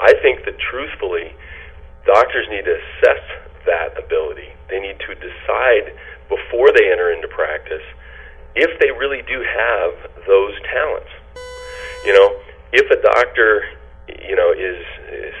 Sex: male